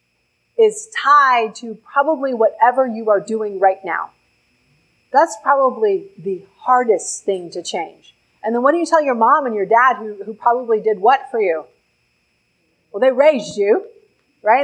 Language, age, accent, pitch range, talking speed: English, 40-59, American, 210-285 Hz, 165 wpm